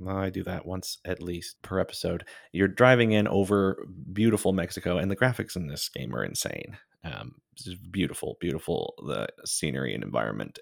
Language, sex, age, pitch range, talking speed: English, male, 30-49, 90-100 Hz, 175 wpm